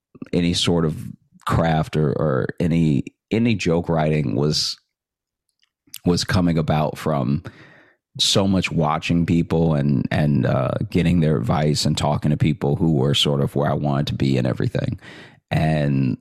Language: English